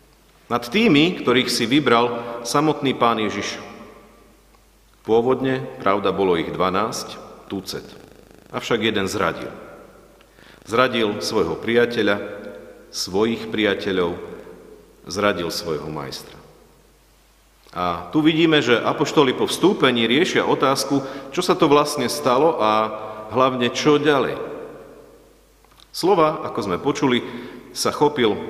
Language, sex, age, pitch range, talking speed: Slovak, male, 40-59, 105-140 Hz, 105 wpm